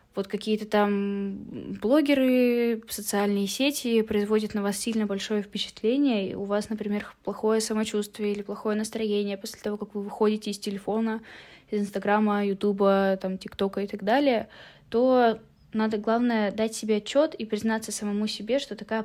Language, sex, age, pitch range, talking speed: Russian, female, 10-29, 200-230 Hz, 150 wpm